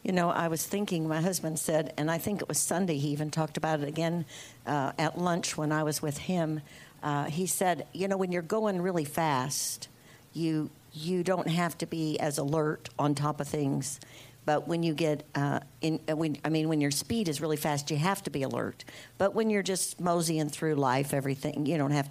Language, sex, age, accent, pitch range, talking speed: English, female, 60-79, American, 145-170 Hz, 225 wpm